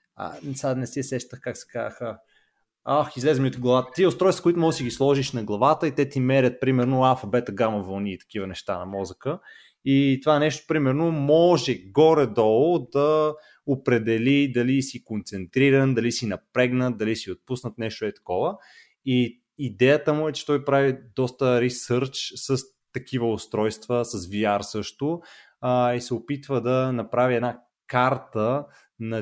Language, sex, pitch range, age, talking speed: Bulgarian, male, 105-130 Hz, 20-39, 160 wpm